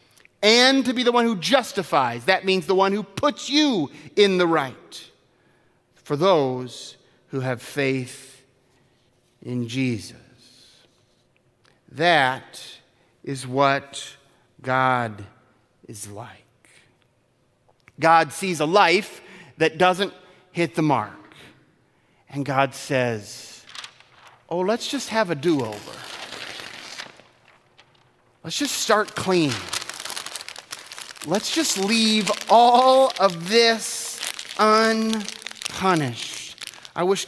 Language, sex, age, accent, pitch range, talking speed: English, male, 40-59, American, 130-215 Hz, 100 wpm